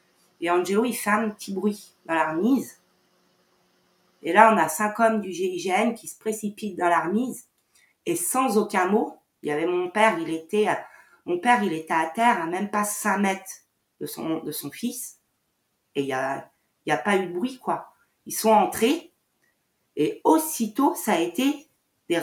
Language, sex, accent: French, female, French